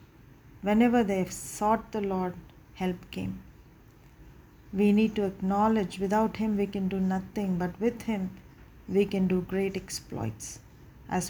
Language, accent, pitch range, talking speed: English, Indian, 180-205 Hz, 140 wpm